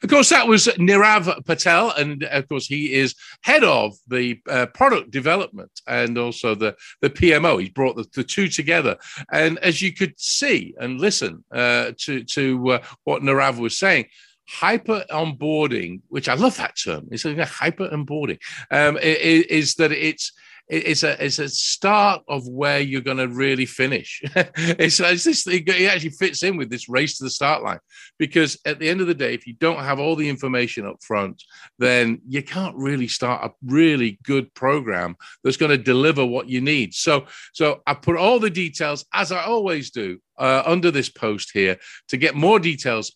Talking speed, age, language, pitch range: 190 wpm, 50-69, English, 125-180 Hz